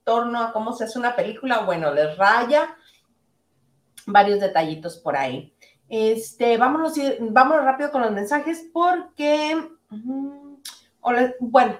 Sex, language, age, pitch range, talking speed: female, Spanish, 30-49, 215-285 Hz, 115 wpm